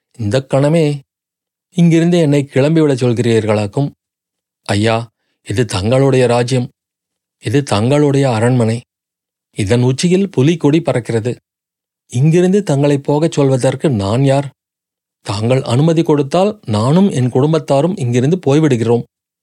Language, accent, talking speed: Tamil, native, 95 wpm